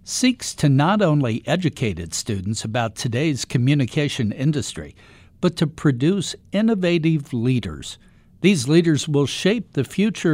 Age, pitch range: 60-79, 120-170 Hz